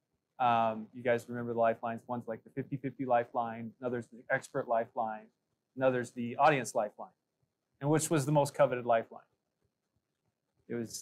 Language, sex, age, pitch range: English, male, 30-49, 115-135 Hz